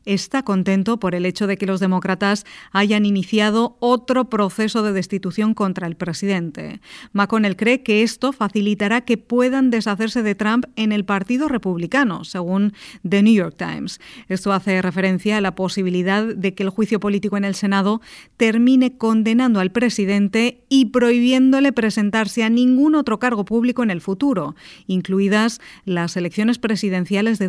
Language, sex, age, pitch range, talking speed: Spanish, female, 30-49, 195-235 Hz, 155 wpm